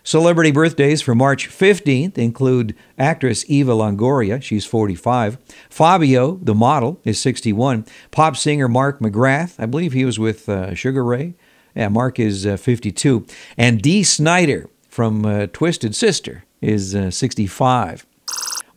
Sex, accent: male, American